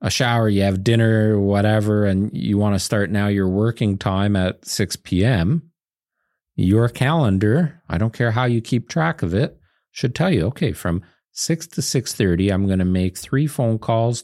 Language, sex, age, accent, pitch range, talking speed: English, male, 40-59, American, 100-145 Hz, 185 wpm